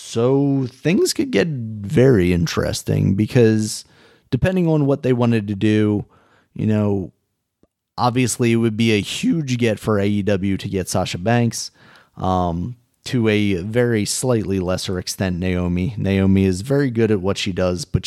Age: 30-49